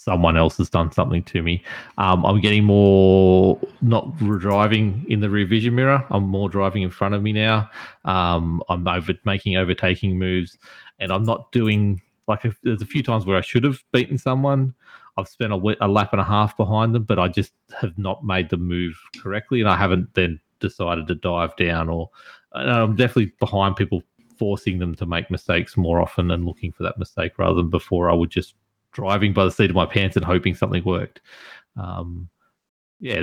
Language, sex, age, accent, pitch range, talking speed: English, male, 30-49, Australian, 90-110 Hz, 200 wpm